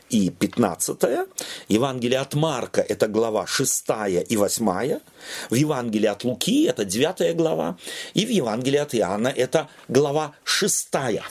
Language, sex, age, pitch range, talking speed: Russian, male, 40-59, 130-190 Hz, 150 wpm